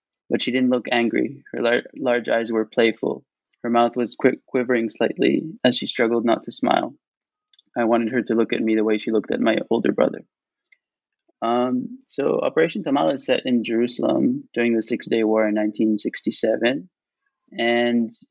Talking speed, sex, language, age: 175 wpm, male, English, 20-39